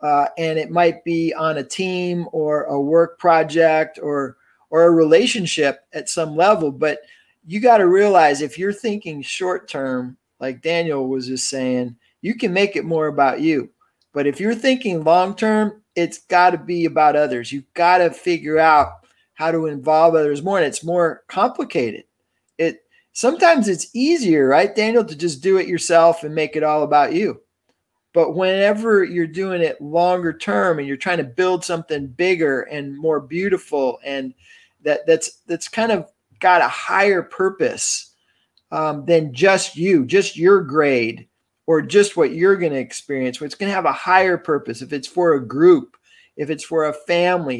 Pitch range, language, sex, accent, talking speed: 150-190 Hz, English, male, American, 180 wpm